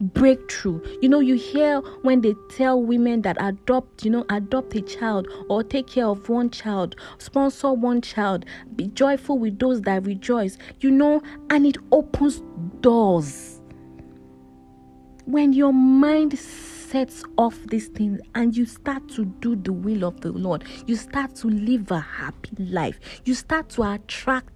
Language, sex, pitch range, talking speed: English, female, 195-270 Hz, 160 wpm